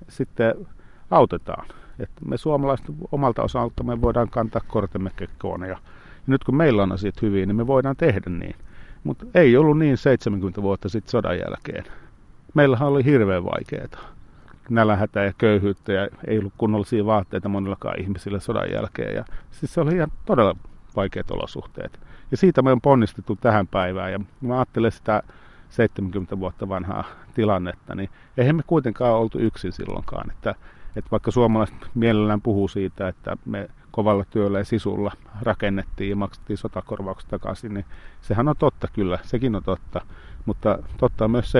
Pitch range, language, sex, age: 95-120 Hz, Finnish, male, 50-69